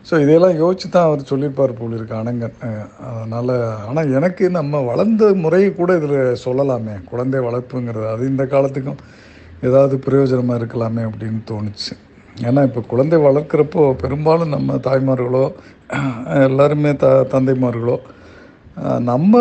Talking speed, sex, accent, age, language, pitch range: 115 wpm, male, native, 50-69, Tamil, 125-165 Hz